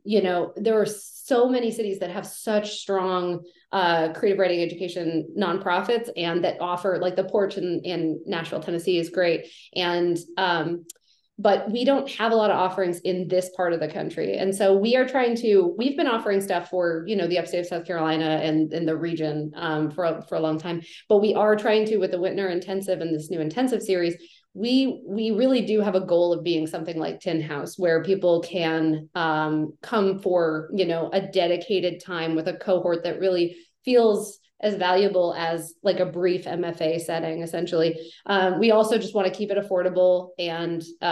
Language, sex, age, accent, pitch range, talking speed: English, female, 30-49, American, 170-200 Hz, 200 wpm